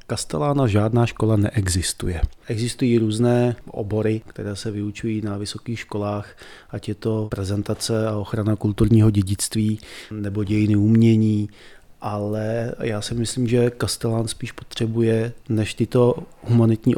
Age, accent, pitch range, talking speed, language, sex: 30-49, native, 105-120 Hz, 125 wpm, Czech, male